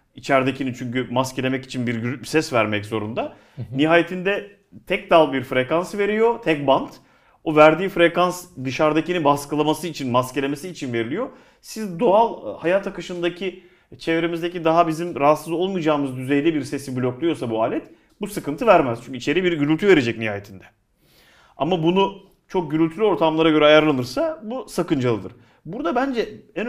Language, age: Turkish, 40-59